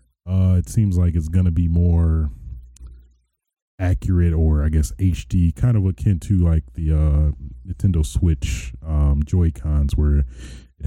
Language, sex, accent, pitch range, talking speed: English, male, American, 70-90 Hz, 150 wpm